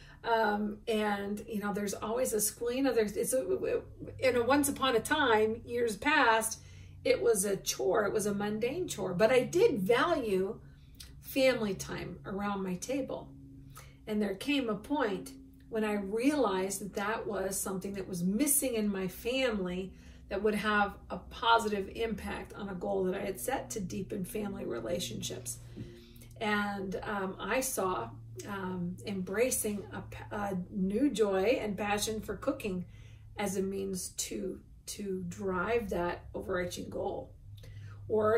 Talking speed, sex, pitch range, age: 150 wpm, female, 195-265 Hz, 50-69